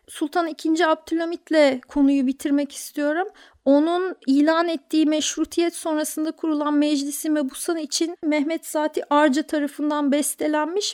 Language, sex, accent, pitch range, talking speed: Turkish, female, native, 300-345 Hz, 110 wpm